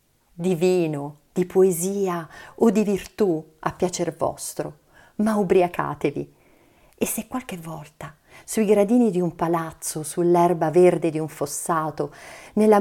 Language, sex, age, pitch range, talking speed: Italian, female, 40-59, 160-210 Hz, 125 wpm